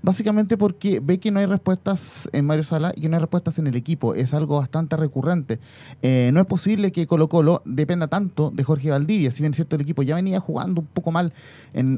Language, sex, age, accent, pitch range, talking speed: Spanish, male, 30-49, Venezuelan, 130-185 Hz, 235 wpm